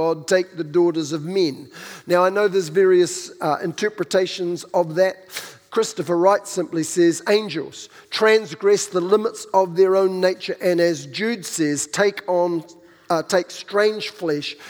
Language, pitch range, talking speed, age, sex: English, 170-195 Hz, 150 wpm, 50-69, male